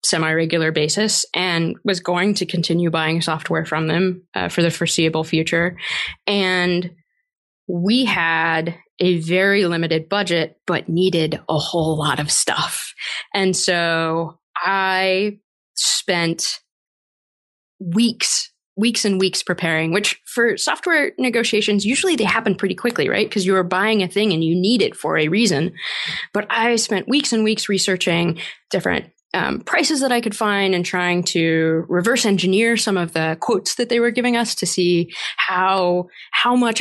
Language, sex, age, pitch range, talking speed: English, female, 20-39, 170-215 Hz, 155 wpm